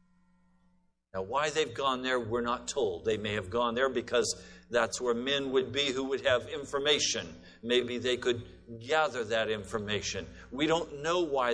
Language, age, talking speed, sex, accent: English, 50-69, 170 wpm, male, American